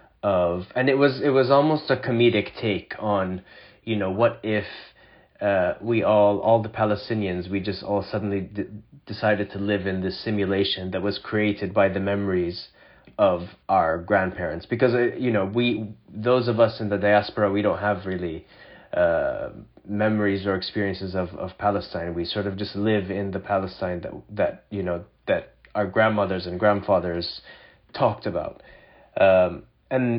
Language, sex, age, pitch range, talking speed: English, male, 30-49, 95-115 Hz, 165 wpm